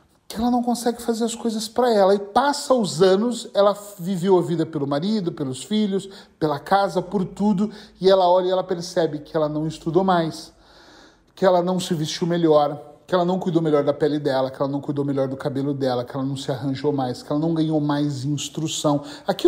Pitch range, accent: 155-215 Hz, Brazilian